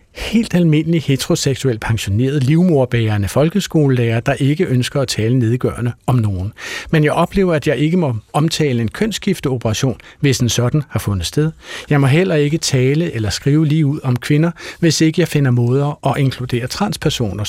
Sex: male